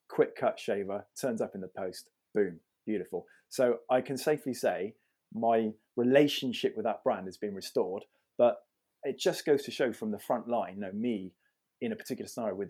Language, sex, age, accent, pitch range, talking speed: English, male, 20-39, British, 100-130 Hz, 195 wpm